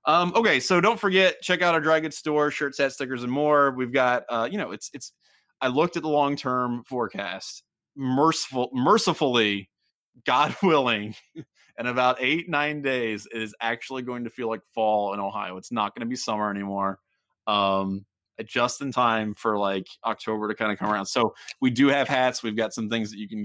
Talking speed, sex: 200 wpm, male